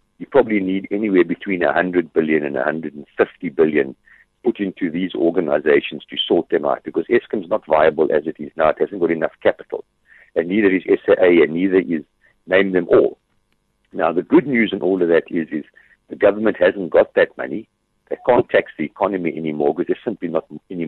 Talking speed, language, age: 200 wpm, English, 60-79